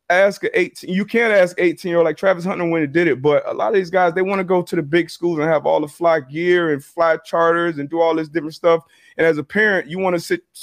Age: 30-49